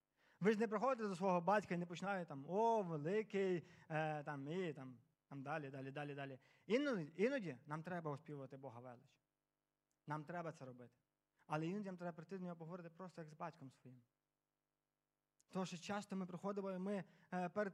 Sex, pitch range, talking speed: male, 155-195 Hz, 175 wpm